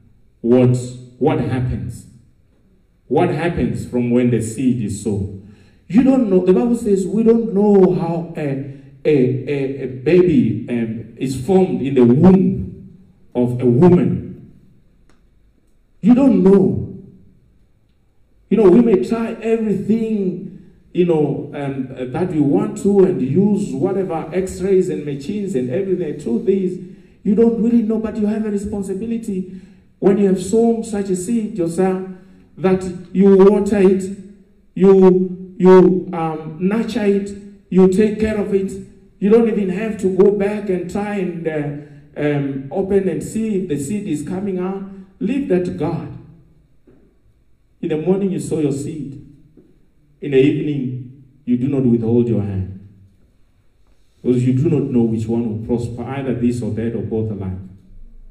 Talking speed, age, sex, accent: 155 wpm, 50-69, male, Nigerian